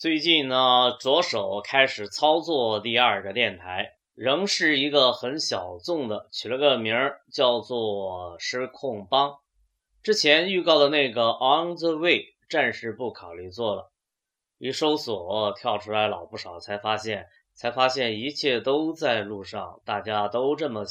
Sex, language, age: male, Chinese, 20-39